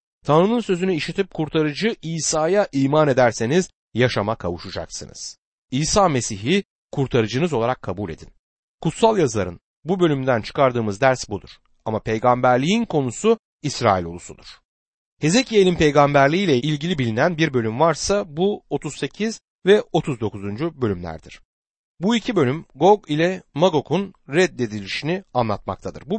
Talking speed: 110 wpm